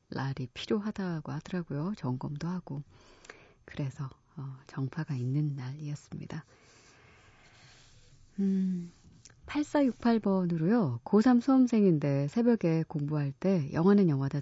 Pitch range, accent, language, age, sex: 140-195 Hz, native, Korean, 30-49, female